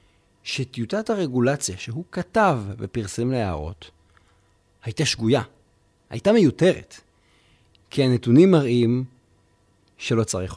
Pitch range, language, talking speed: 100-145 Hz, Hebrew, 85 wpm